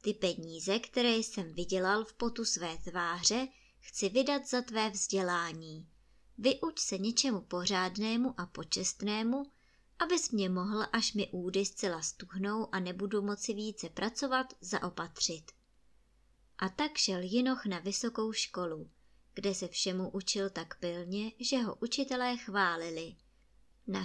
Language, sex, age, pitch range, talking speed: Czech, male, 20-39, 185-255 Hz, 130 wpm